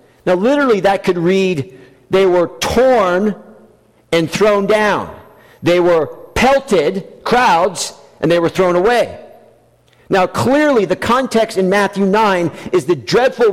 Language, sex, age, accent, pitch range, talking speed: English, male, 50-69, American, 185-245 Hz, 135 wpm